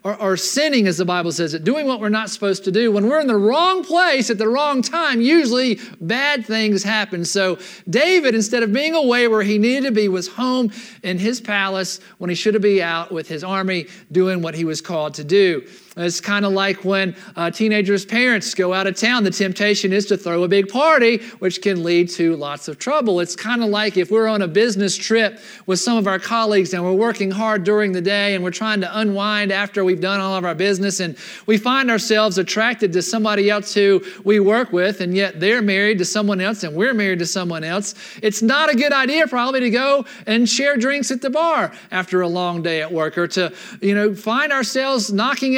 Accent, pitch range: American, 185-230 Hz